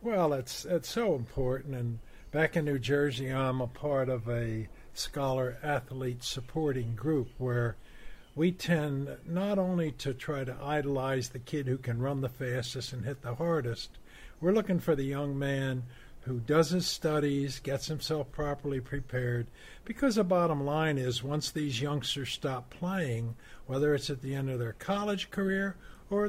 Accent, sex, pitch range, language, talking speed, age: American, male, 130-170 Hz, English, 165 wpm, 60-79